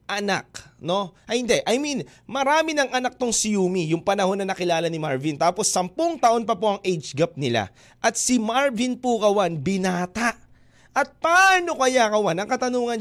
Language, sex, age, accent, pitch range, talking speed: Filipino, male, 20-39, native, 190-260 Hz, 175 wpm